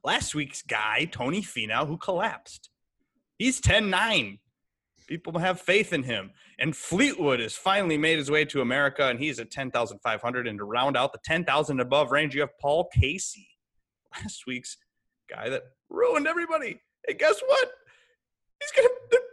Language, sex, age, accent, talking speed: English, male, 30-49, American, 160 wpm